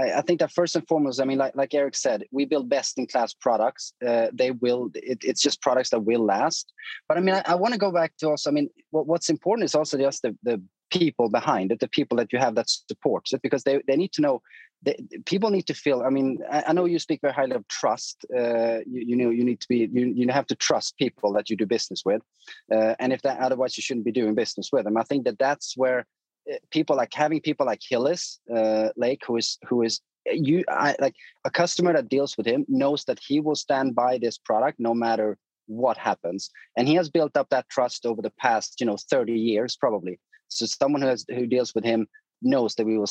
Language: English